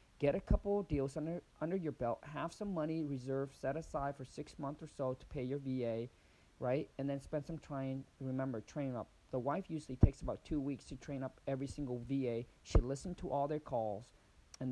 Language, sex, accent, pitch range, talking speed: English, male, American, 125-145 Hz, 220 wpm